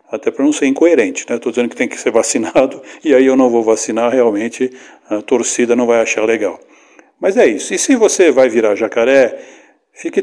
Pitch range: 120-150 Hz